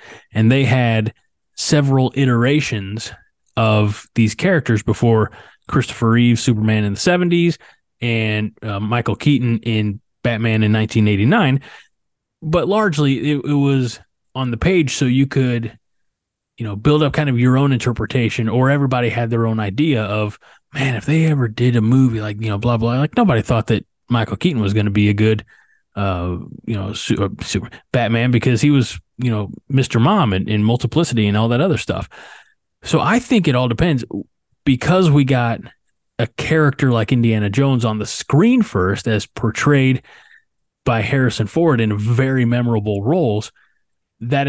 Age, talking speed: 20-39, 165 wpm